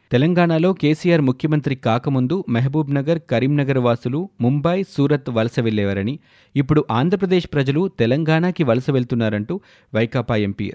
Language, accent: Telugu, native